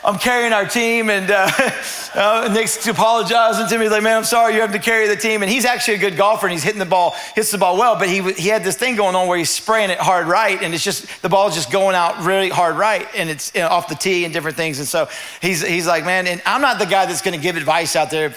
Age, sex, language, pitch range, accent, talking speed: 40-59, male, English, 190-235 Hz, American, 290 wpm